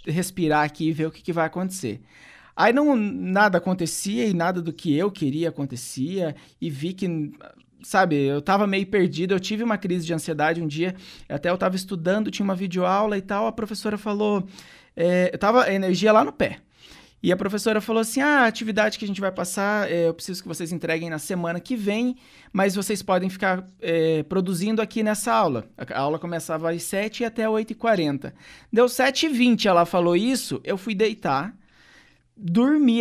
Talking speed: 190 wpm